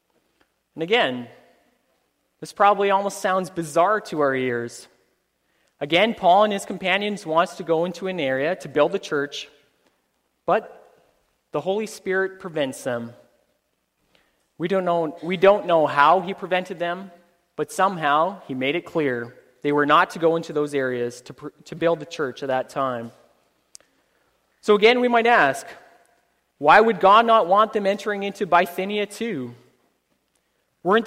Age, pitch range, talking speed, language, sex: 20-39, 145-205 Hz, 155 wpm, English, male